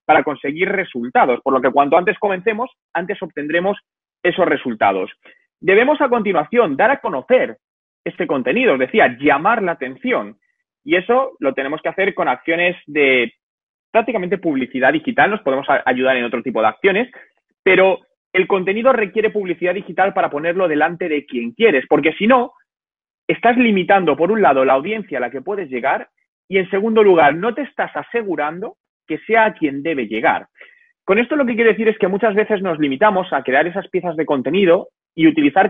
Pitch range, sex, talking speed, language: 155-220 Hz, male, 180 wpm, Spanish